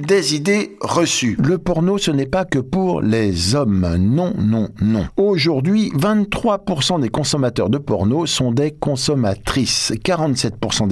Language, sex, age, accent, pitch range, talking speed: French, male, 50-69, French, 120-190 Hz, 135 wpm